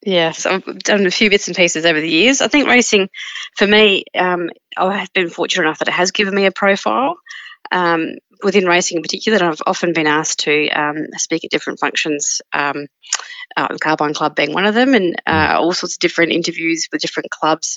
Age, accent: 30-49, Australian